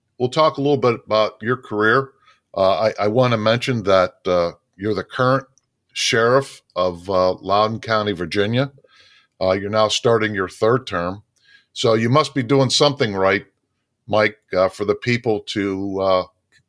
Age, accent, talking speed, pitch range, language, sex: 50-69, American, 165 wpm, 95-120 Hz, English, male